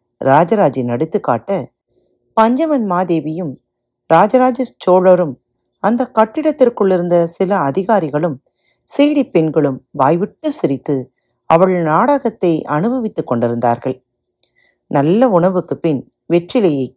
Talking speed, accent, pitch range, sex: 80 wpm, native, 140-225 Hz, female